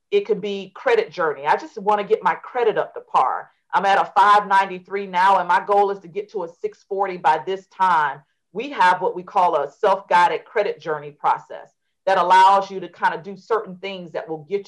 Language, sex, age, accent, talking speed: English, female, 40-59, American, 220 wpm